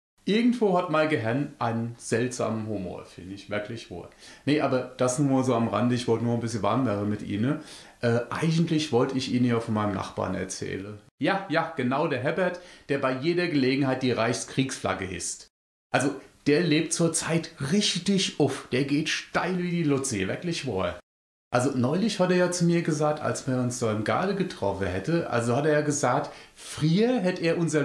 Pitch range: 115-155 Hz